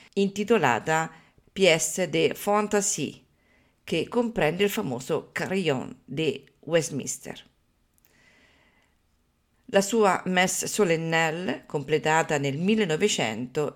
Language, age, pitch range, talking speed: Italian, 50-69, 145-195 Hz, 80 wpm